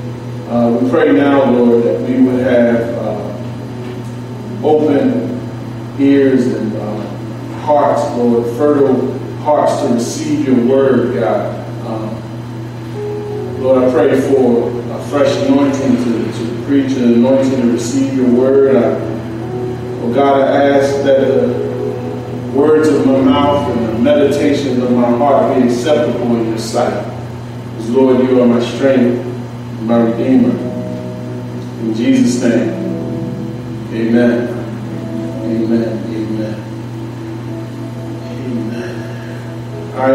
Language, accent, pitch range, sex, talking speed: English, American, 115-130 Hz, male, 115 wpm